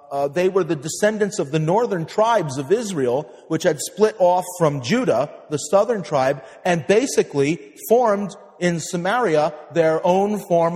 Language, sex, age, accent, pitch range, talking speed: English, male, 40-59, American, 135-205 Hz, 155 wpm